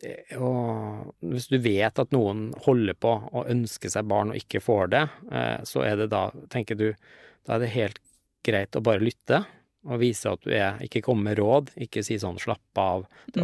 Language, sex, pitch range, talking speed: English, male, 110-125 Hz, 210 wpm